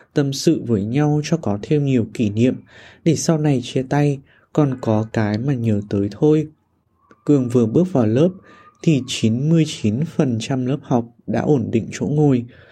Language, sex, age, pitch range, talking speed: Vietnamese, male, 20-39, 115-155 Hz, 170 wpm